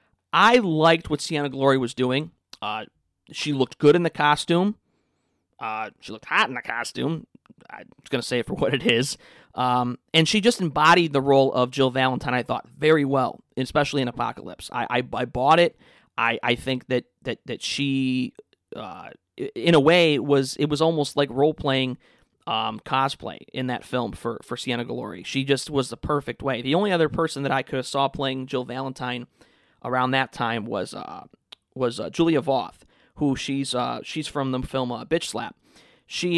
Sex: male